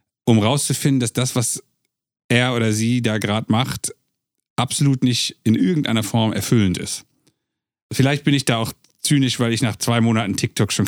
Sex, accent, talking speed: male, German, 170 wpm